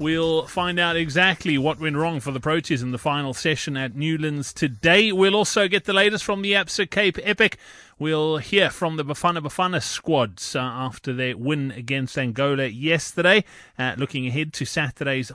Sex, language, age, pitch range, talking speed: male, English, 30-49, 140-180 Hz, 180 wpm